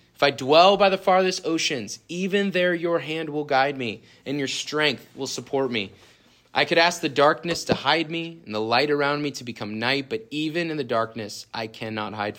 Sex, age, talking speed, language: male, 30-49, 215 wpm, English